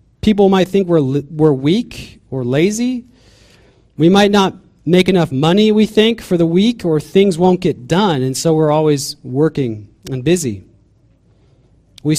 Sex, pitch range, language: male, 125-180 Hz, English